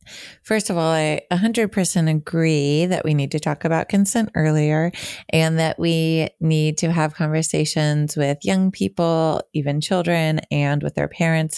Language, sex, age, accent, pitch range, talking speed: English, female, 30-49, American, 150-165 Hz, 165 wpm